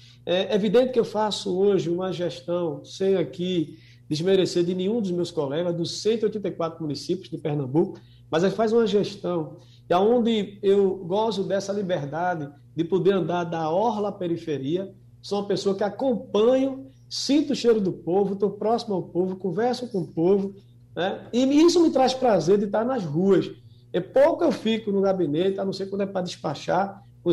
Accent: Brazilian